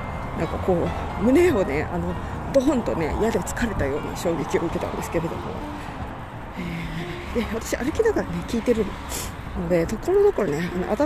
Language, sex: Japanese, female